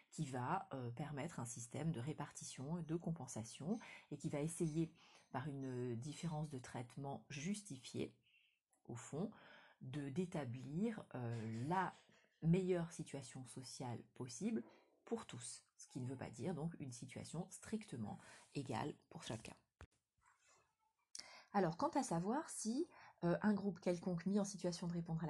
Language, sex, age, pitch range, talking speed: French, female, 30-49, 135-180 Hz, 145 wpm